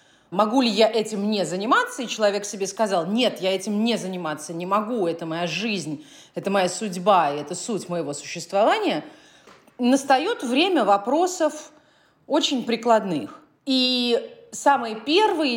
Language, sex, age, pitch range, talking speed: Russian, female, 30-49, 205-265 Hz, 140 wpm